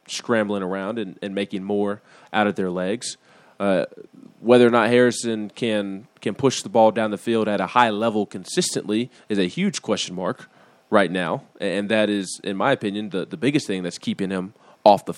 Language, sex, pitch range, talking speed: English, male, 105-135 Hz, 200 wpm